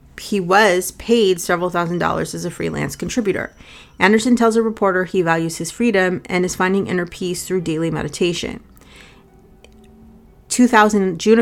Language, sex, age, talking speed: English, female, 30-49, 140 wpm